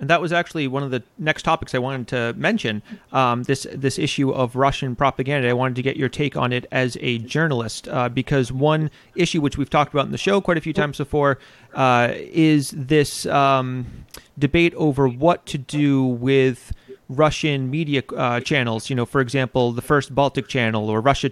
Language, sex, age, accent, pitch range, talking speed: English, male, 30-49, American, 120-150 Hz, 200 wpm